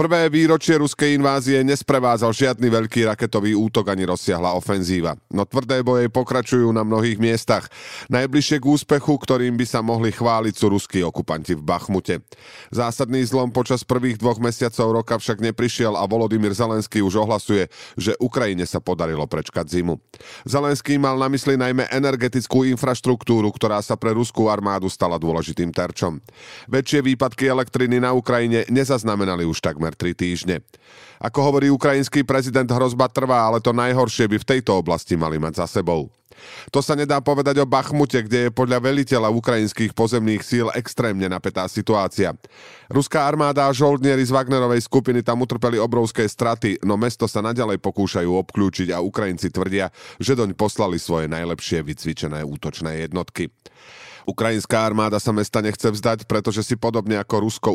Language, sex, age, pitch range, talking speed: Slovak, male, 40-59, 95-130 Hz, 150 wpm